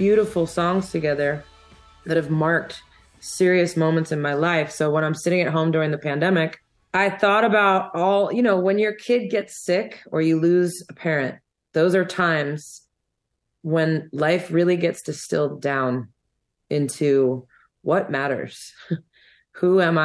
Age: 30-49